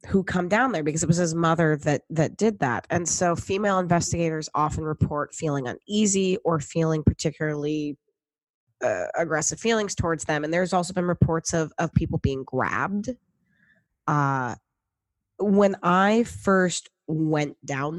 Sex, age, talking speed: female, 20-39, 150 wpm